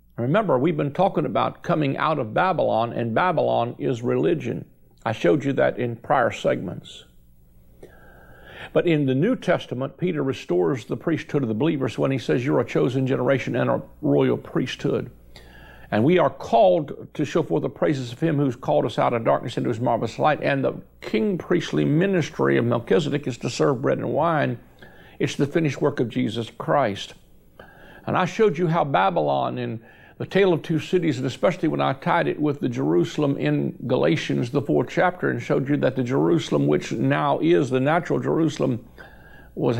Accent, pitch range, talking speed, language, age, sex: American, 110-155 Hz, 185 wpm, English, 50-69, male